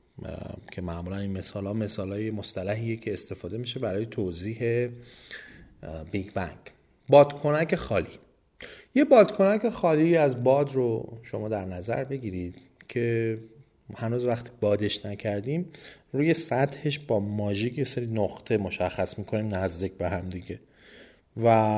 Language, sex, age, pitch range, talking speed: Persian, male, 30-49, 95-130 Hz, 125 wpm